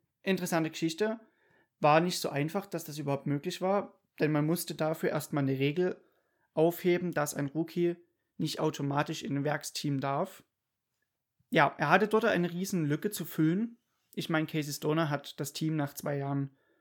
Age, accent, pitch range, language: 30-49, German, 145-180 Hz, German